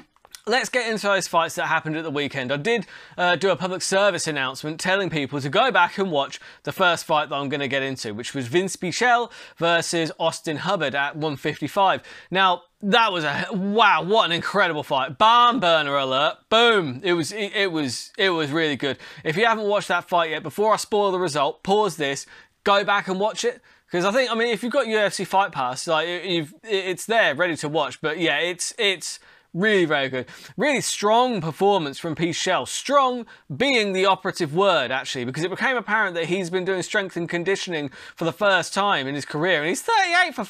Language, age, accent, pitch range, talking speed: English, 20-39, British, 160-215 Hz, 210 wpm